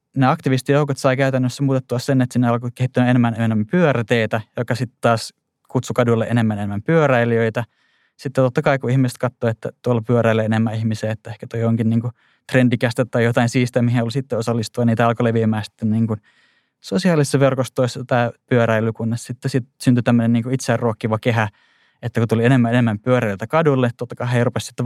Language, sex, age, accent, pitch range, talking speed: Finnish, male, 20-39, native, 110-125 Hz, 175 wpm